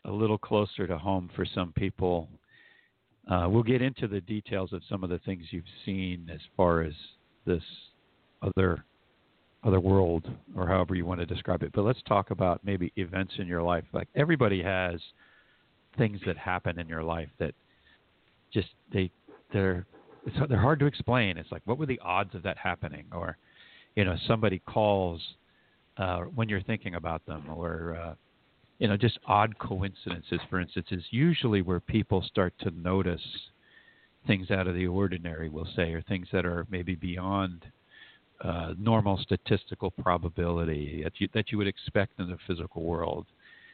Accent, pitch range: American, 85-100 Hz